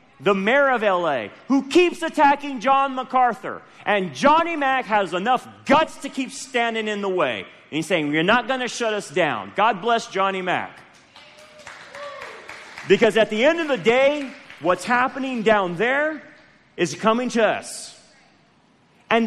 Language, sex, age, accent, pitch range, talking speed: English, male, 40-59, American, 160-245 Hz, 160 wpm